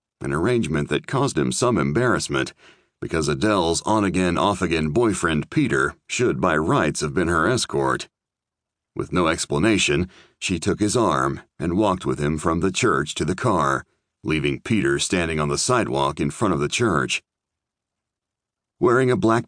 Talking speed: 155 wpm